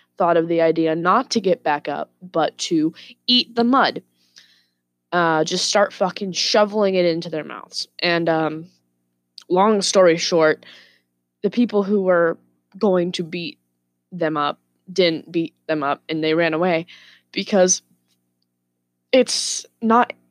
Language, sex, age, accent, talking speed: English, female, 20-39, American, 140 wpm